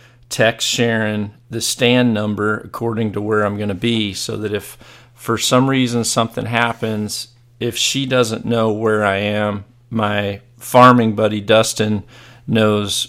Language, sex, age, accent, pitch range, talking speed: English, male, 40-59, American, 105-120 Hz, 145 wpm